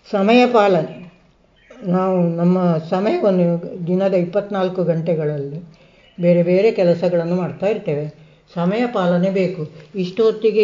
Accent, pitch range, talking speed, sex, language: native, 170-205 Hz, 95 wpm, female, Kannada